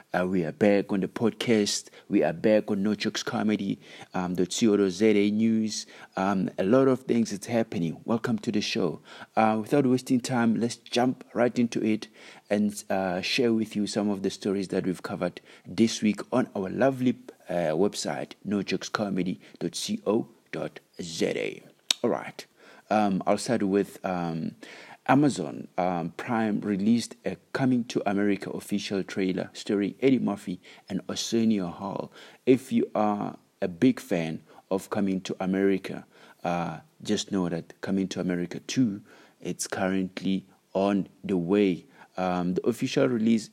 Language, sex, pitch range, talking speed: English, male, 90-110 Hz, 145 wpm